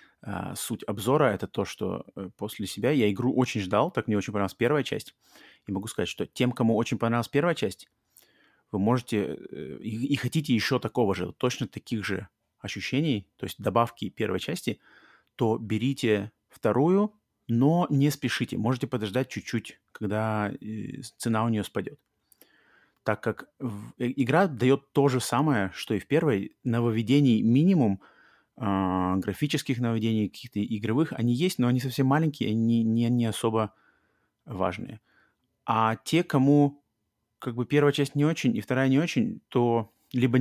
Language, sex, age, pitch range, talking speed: Russian, male, 30-49, 110-135 Hz, 150 wpm